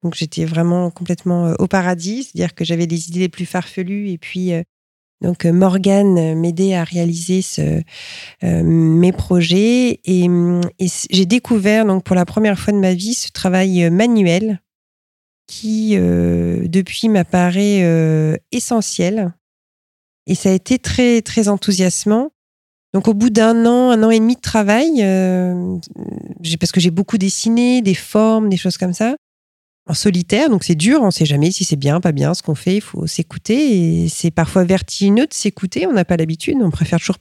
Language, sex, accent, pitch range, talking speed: French, female, French, 170-215 Hz, 170 wpm